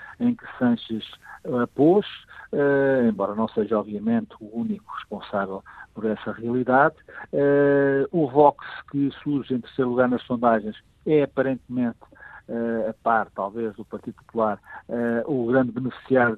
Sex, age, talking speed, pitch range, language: male, 50-69, 145 wpm, 115-140 Hz, Portuguese